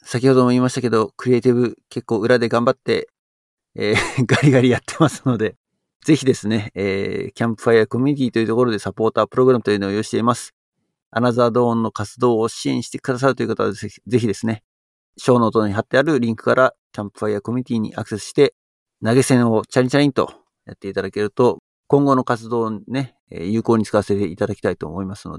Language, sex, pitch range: Japanese, male, 105-130 Hz